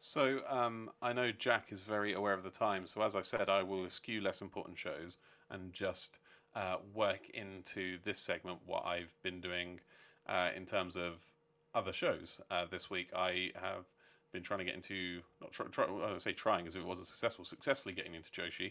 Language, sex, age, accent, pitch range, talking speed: English, male, 30-49, British, 95-105 Hz, 205 wpm